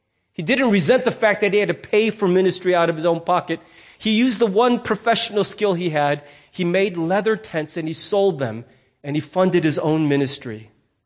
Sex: male